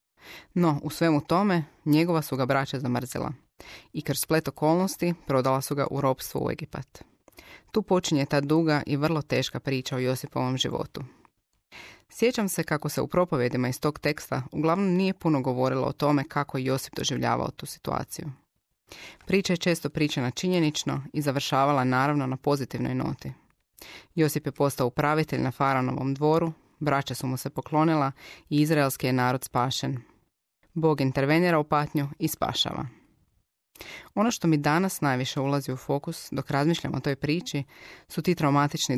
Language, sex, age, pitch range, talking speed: Croatian, female, 20-39, 135-160 Hz, 155 wpm